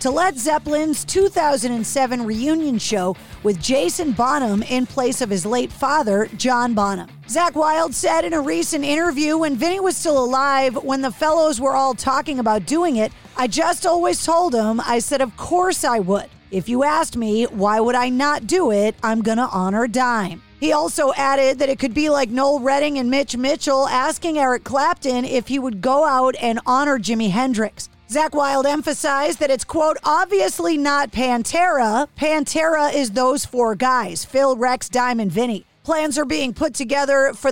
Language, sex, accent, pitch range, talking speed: English, female, American, 240-300 Hz, 180 wpm